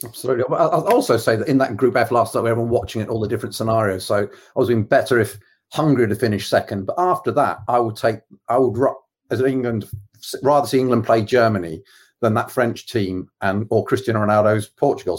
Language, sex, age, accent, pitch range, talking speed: English, male, 40-59, British, 105-130 Hz, 215 wpm